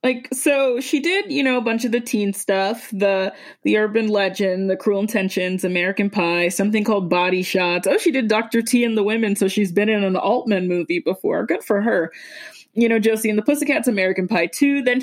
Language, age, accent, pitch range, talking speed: English, 20-39, American, 190-260 Hz, 215 wpm